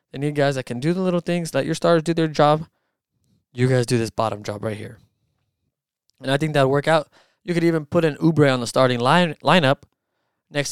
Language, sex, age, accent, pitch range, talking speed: English, male, 20-39, American, 115-155 Hz, 230 wpm